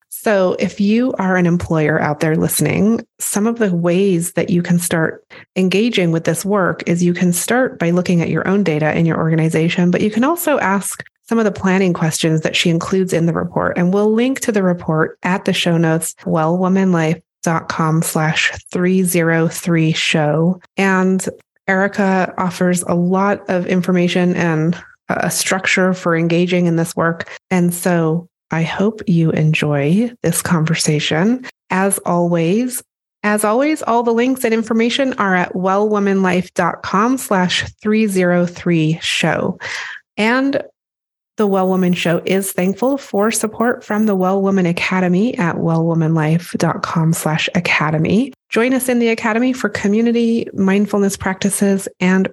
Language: English